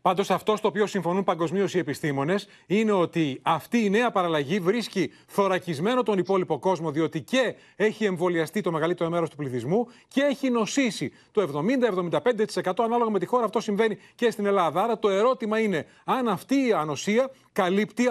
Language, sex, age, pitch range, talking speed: Greek, male, 30-49, 160-215 Hz, 170 wpm